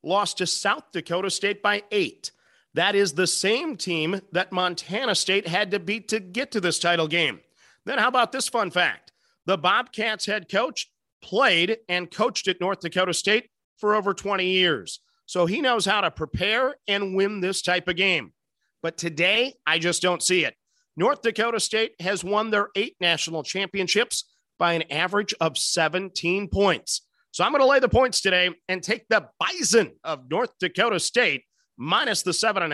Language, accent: English, American